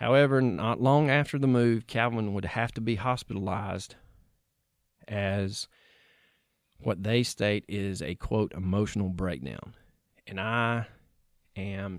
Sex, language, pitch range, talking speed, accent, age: male, English, 95-115 Hz, 120 wpm, American, 40-59